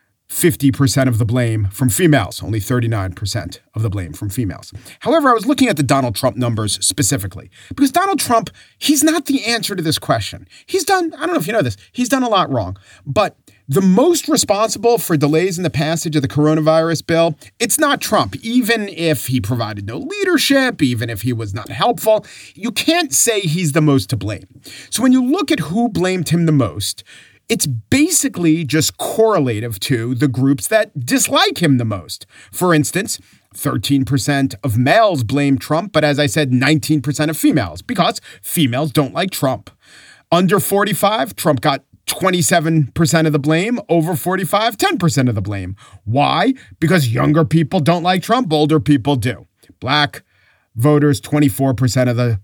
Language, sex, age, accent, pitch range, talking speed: English, male, 40-59, American, 120-185 Hz, 175 wpm